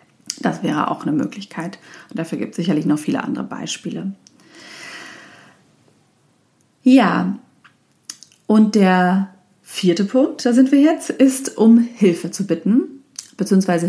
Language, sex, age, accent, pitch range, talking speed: German, female, 40-59, German, 170-240 Hz, 125 wpm